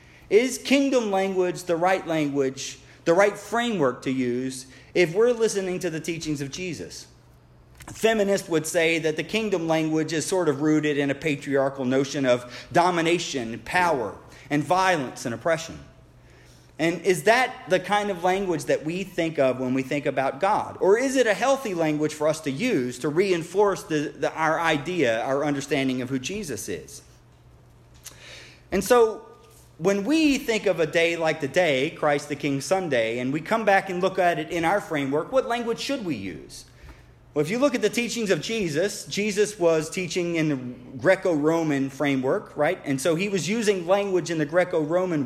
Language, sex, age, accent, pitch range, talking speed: English, male, 40-59, American, 145-195 Hz, 180 wpm